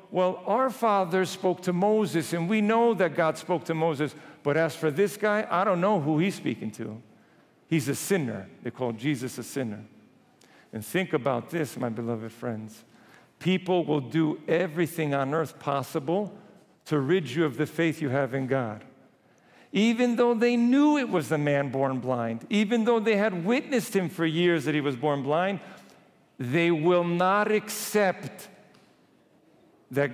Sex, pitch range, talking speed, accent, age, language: male, 140-190 Hz, 170 wpm, American, 50-69, English